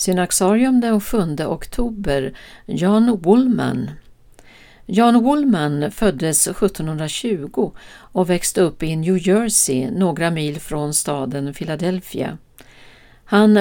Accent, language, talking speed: native, Swedish, 95 wpm